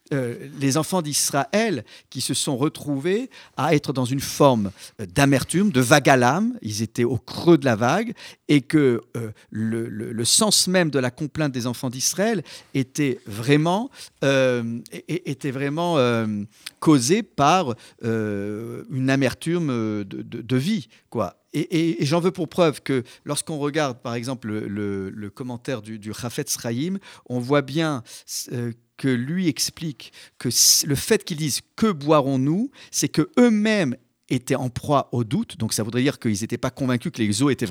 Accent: French